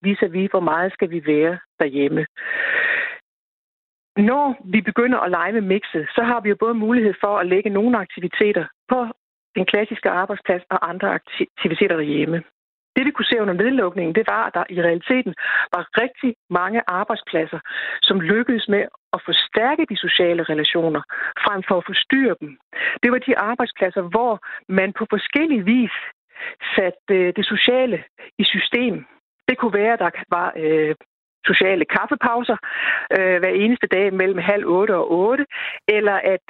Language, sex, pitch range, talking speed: Danish, female, 185-235 Hz, 160 wpm